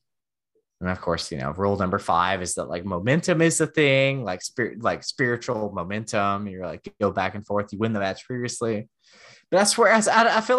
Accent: American